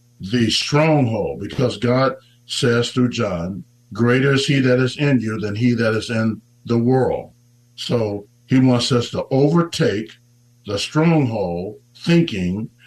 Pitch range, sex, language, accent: 110-130 Hz, male, English, American